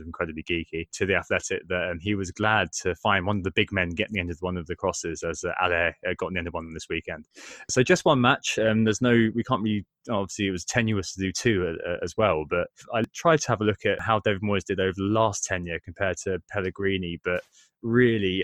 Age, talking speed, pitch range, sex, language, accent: 20-39, 255 wpm, 90-115 Hz, male, English, British